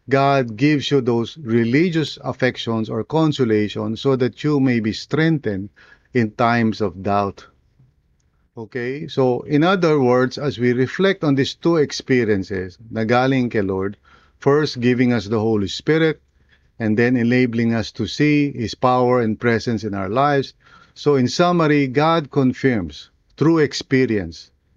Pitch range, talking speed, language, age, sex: 105-135 Hz, 140 wpm, English, 50-69, male